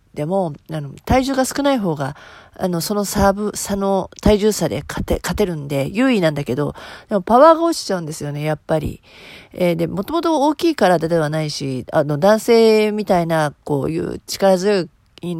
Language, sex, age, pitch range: Japanese, female, 40-59, 160-235 Hz